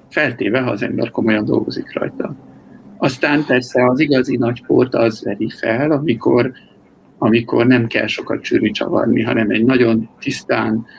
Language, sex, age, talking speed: Hungarian, male, 60-79, 135 wpm